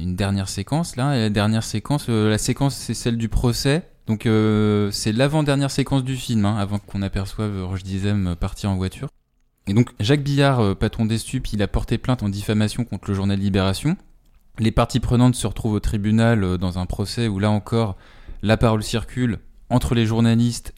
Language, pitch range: French, 100-120 Hz